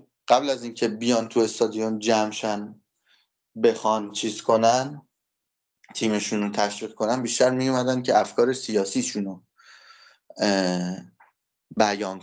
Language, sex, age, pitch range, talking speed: Persian, male, 30-49, 100-130 Hz, 105 wpm